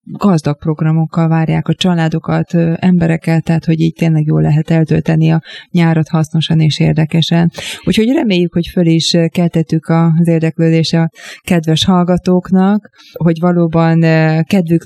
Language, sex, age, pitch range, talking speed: Hungarian, female, 20-39, 160-180 Hz, 130 wpm